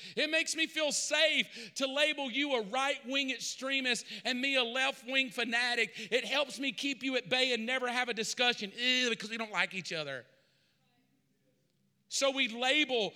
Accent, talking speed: American, 170 wpm